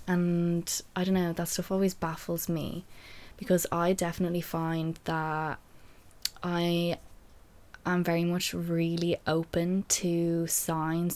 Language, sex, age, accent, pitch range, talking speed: English, female, 20-39, Irish, 160-175 Hz, 120 wpm